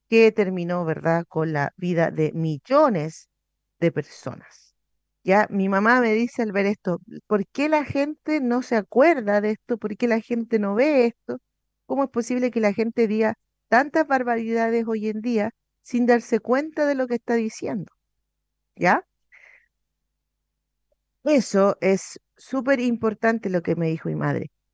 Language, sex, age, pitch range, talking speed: Spanish, female, 50-69, 180-245 Hz, 160 wpm